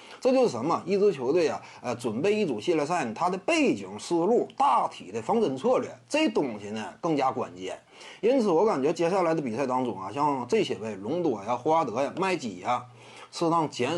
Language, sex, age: Chinese, male, 30-49